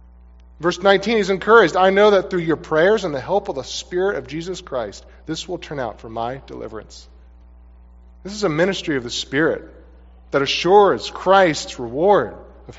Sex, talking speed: male, 180 wpm